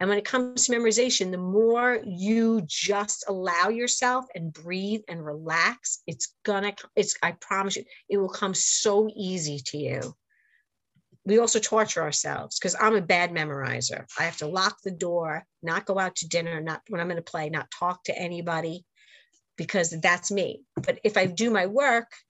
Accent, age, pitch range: American, 50-69, 165-215 Hz